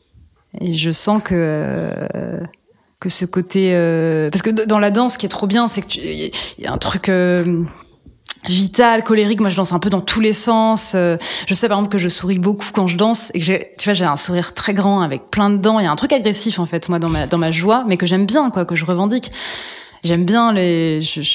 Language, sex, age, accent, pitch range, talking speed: French, female, 20-39, French, 170-220 Hz, 250 wpm